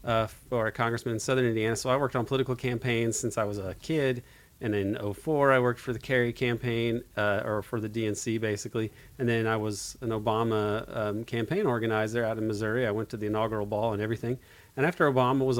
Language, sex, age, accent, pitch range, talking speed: English, male, 40-59, American, 110-125 Hz, 220 wpm